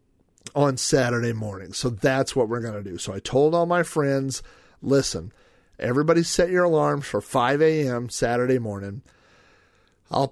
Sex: male